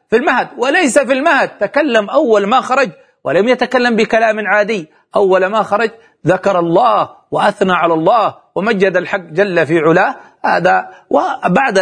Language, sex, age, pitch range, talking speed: Arabic, male, 40-59, 185-230 Hz, 140 wpm